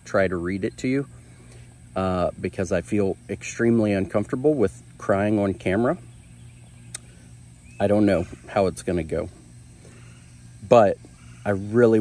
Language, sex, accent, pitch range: English, male, American, 85-115 Hz